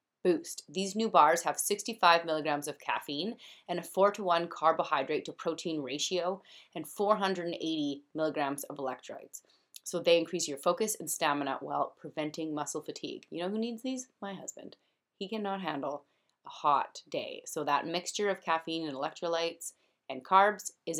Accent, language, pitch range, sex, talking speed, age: American, English, 150-190 Hz, female, 165 wpm, 30-49